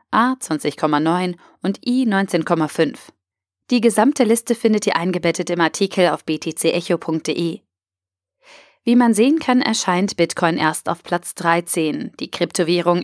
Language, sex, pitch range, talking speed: German, female, 160-200 Hz, 125 wpm